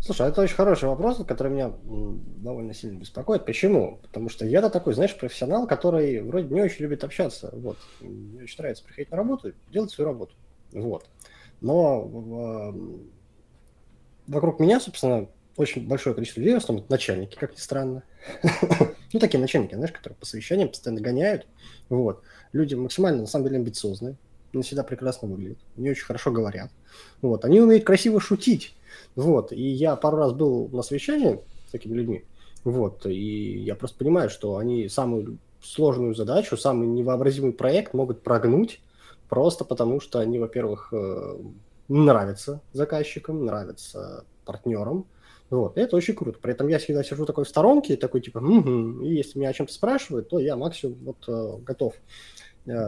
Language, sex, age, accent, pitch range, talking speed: Russian, male, 20-39, native, 115-150 Hz, 155 wpm